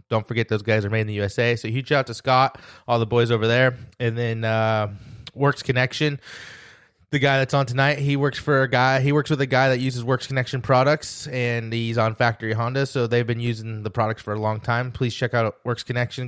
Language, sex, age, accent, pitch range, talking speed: English, male, 20-39, American, 120-145 Hz, 240 wpm